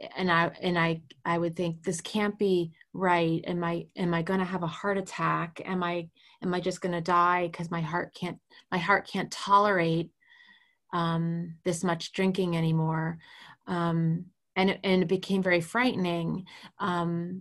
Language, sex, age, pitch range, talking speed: English, female, 30-49, 170-195 Hz, 170 wpm